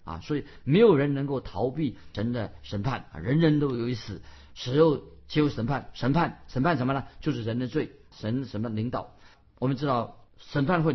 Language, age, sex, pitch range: Chinese, 50-69, male, 110-145 Hz